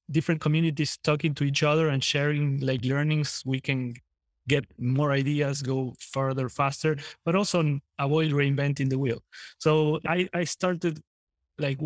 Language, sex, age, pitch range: English, male, 20-39, 135-155 Hz